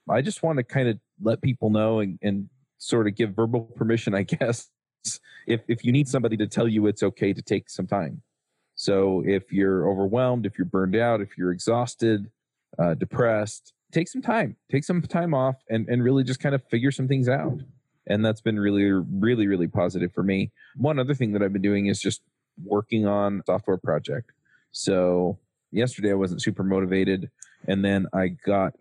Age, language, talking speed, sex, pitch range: 30-49, English, 200 wpm, male, 95-120 Hz